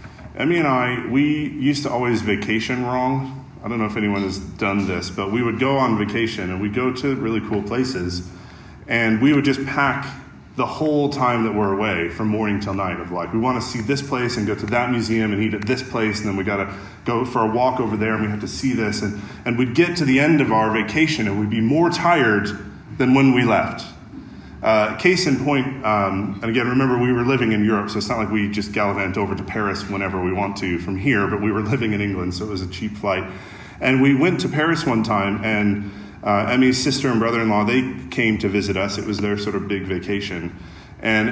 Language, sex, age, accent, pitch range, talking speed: English, male, 30-49, American, 100-130 Hz, 240 wpm